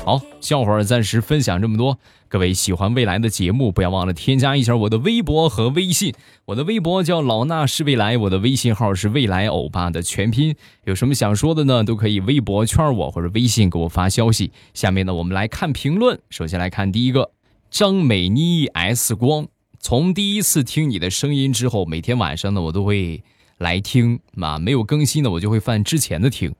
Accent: native